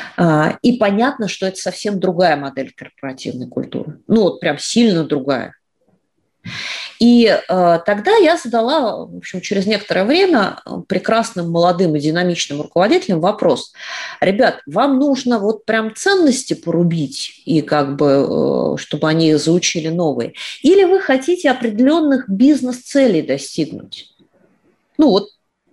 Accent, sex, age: native, female, 30-49